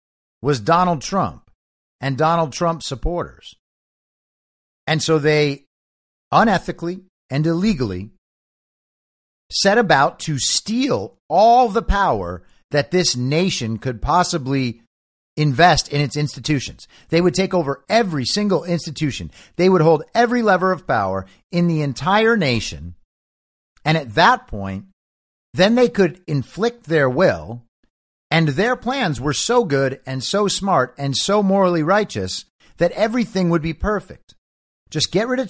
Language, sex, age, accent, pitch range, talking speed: English, male, 50-69, American, 120-190 Hz, 135 wpm